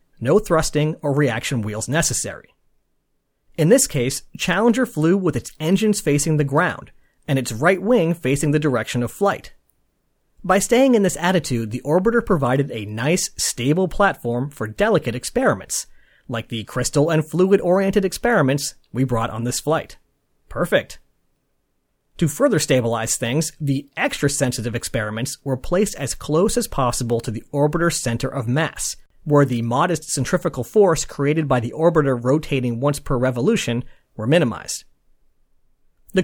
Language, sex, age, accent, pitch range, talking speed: English, male, 30-49, American, 125-185 Hz, 145 wpm